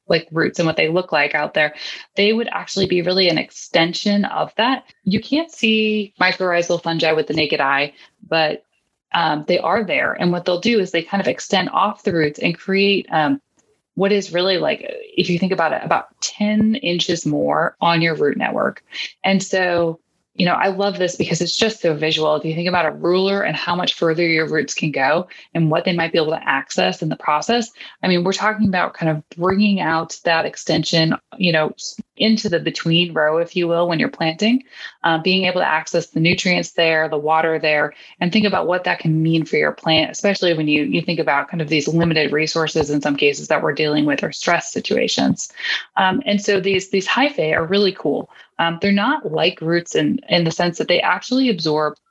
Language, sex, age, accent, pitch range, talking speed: English, female, 20-39, American, 160-200 Hz, 215 wpm